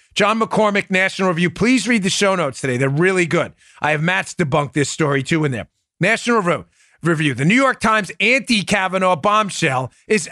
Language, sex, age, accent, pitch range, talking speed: English, male, 40-59, American, 155-220 Hz, 180 wpm